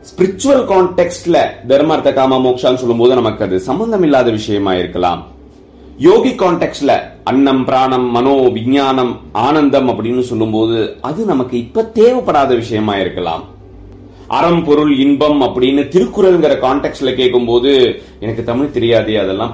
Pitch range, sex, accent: 105-150 Hz, male, native